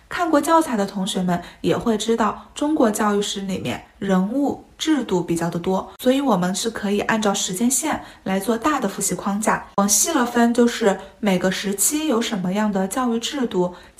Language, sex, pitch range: Chinese, female, 195-270 Hz